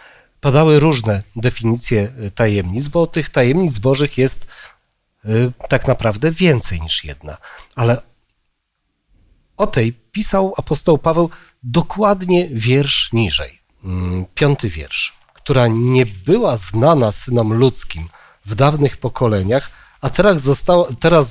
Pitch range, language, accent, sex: 115-155 Hz, Polish, native, male